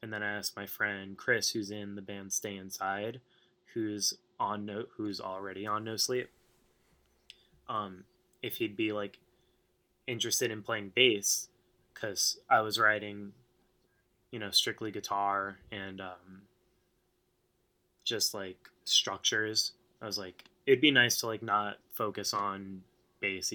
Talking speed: 140 wpm